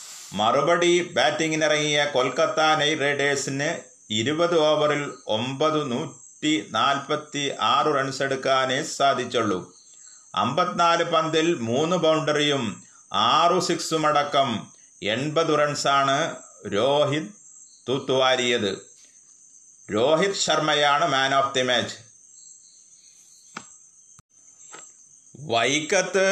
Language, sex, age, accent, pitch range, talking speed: Malayalam, male, 30-49, native, 135-160 Hz, 65 wpm